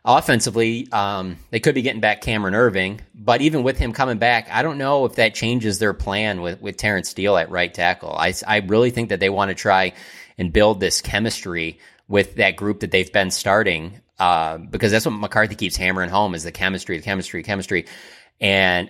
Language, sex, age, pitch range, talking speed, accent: English, male, 30-49, 90-110 Hz, 210 wpm, American